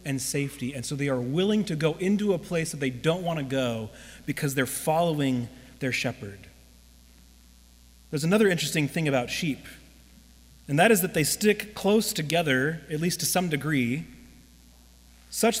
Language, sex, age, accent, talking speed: English, male, 30-49, American, 165 wpm